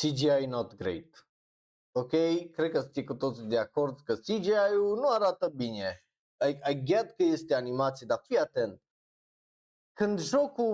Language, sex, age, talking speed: Romanian, male, 20-39, 155 wpm